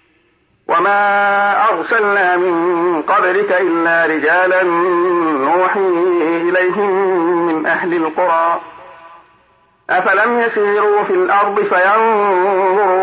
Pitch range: 175-205 Hz